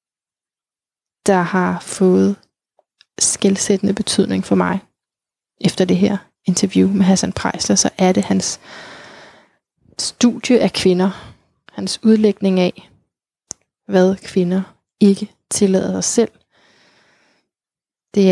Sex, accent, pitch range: female, native, 185-205 Hz